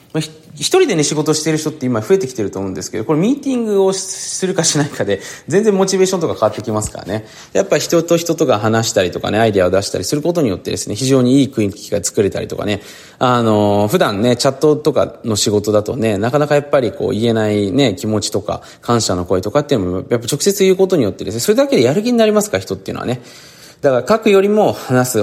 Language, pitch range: Japanese, 105-160 Hz